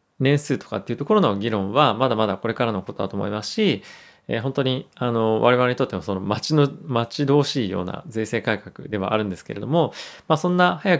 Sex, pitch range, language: male, 105-135 Hz, Japanese